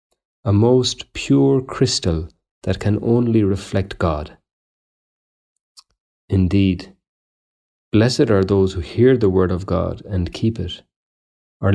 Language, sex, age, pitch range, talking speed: English, male, 40-59, 95-110 Hz, 120 wpm